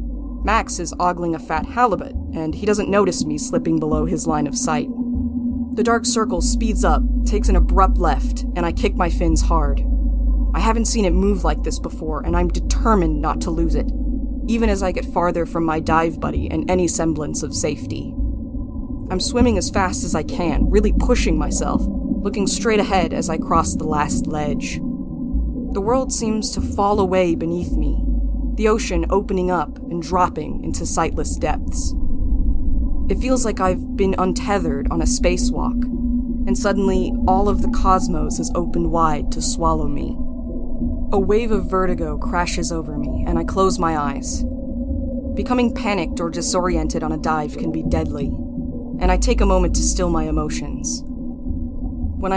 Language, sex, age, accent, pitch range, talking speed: English, female, 20-39, American, 185-250 Hz, 170 wpm